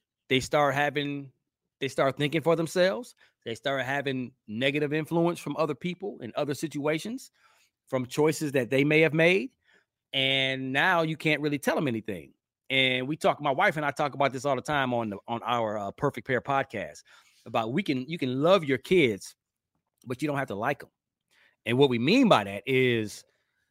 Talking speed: 190 wpm